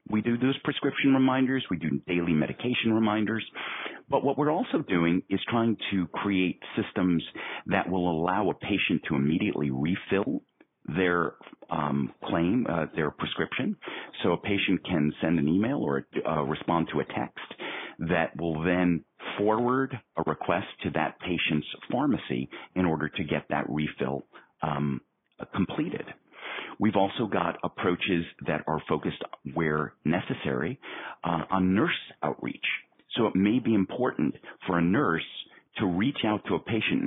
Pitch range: 80-105 Hz